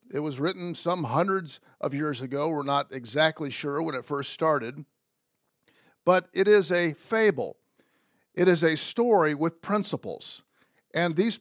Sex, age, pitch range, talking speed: male, 50-69, 145-190 Hz, 155 wpm